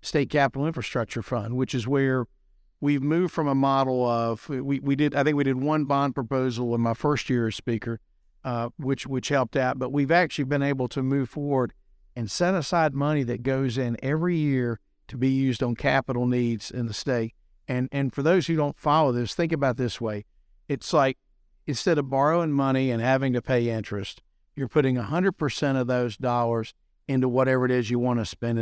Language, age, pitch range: English, 50-69, 120-140 Hz